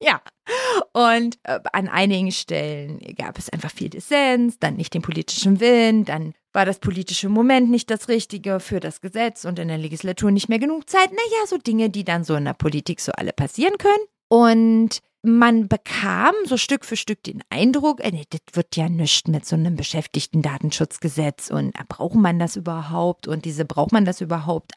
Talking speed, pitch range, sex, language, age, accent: 185 wpm, 170-240 Hz, female, German, 30-49, German